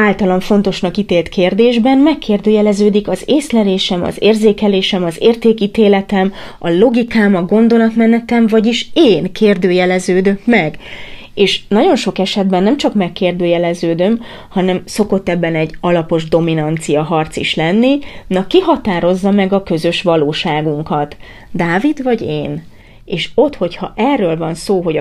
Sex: female